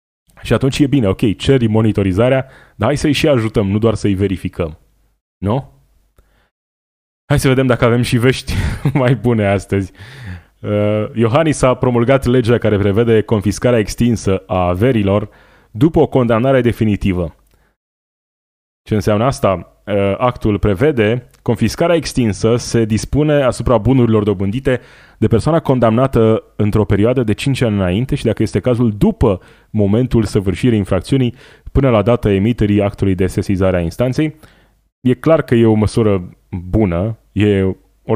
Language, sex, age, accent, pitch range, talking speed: Romanian, male, 20-39, native, 100-125 Hz, 140 wpm